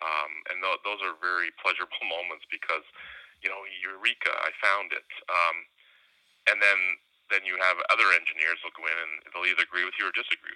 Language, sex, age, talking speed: English, male, 30-49, 195 wpm